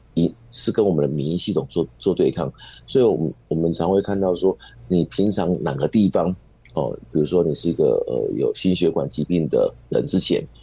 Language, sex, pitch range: Chinese, male, 85-115 Hz